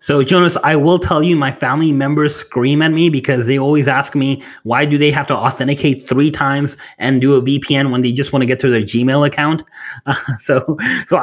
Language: English